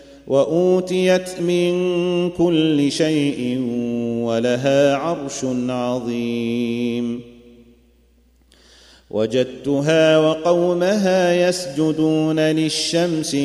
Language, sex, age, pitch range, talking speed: Arabic, male, 30-49, 125-160 Hz, 50 wpm